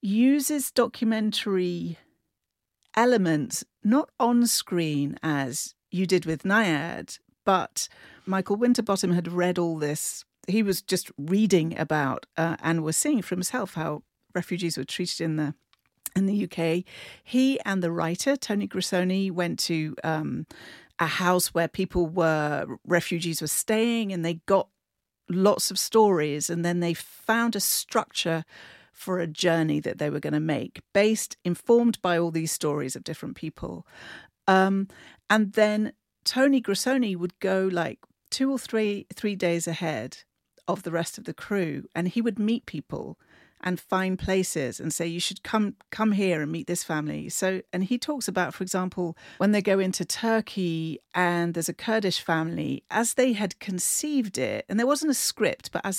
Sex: female